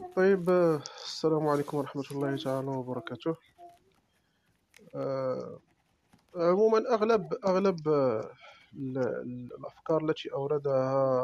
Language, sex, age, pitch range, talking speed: Arabic, male, 40-59, 140-195 Hz, 65 wpm